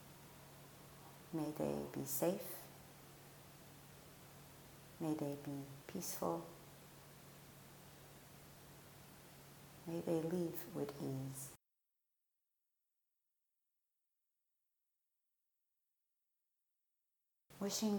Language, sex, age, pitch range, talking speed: English, female, 40-59, 145-180 Hz, 45 wpm